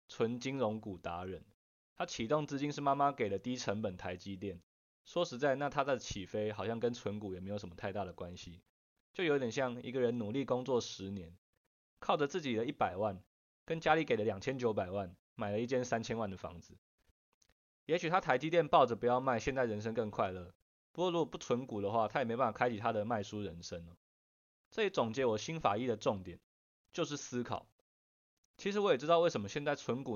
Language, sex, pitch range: Chinese, male, 95-140 Hz